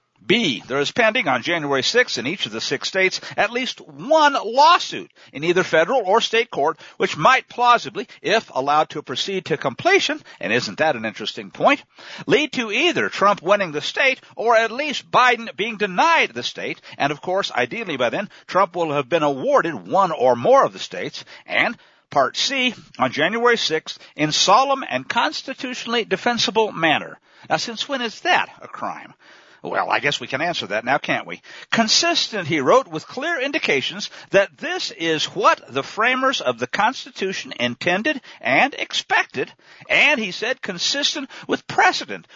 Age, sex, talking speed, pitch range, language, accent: 60-79, male, 175 wpm, 170-275 Hz, English, American